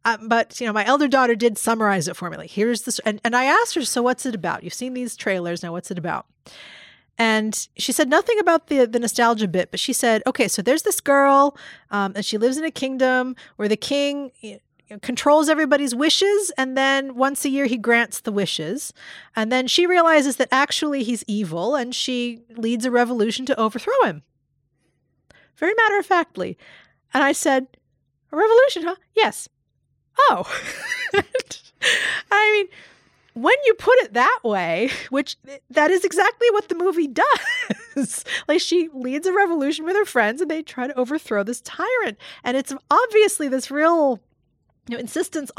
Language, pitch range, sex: English, 225-330 Hz, female